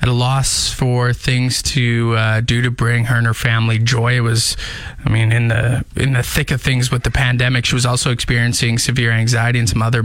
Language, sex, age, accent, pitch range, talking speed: English, male, 20-39, American, 115-145 Hz, 220 wpm